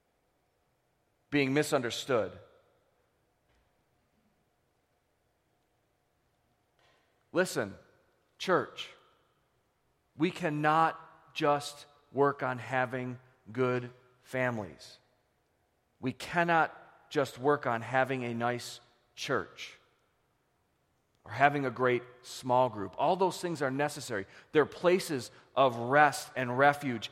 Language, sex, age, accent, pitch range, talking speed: English, male, 40-59, American, 125-155 Hz, 85 wpm